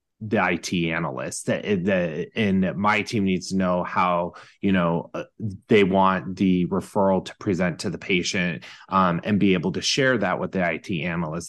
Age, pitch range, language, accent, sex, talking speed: 20-39, 90-110 Hz, English, American, male, 180 wpm